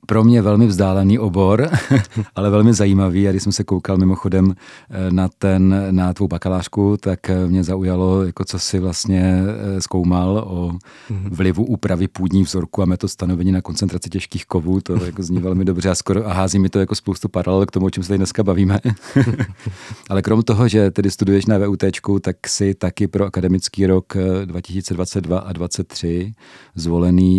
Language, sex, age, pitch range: Czech, male, 40-59, 90-100 Hz